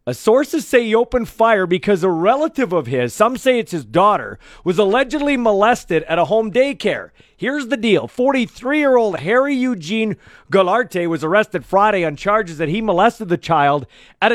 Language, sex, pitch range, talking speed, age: English, male, 185-250 Hz, 170 wpm, 40-59